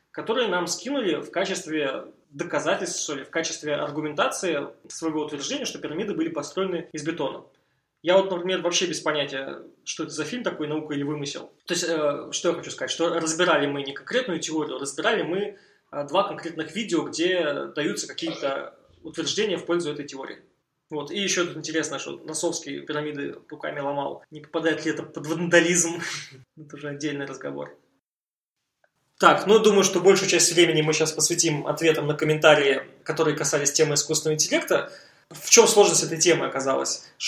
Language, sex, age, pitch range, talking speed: Russian, male, 20-39, 150-175 Hz, 165 wpm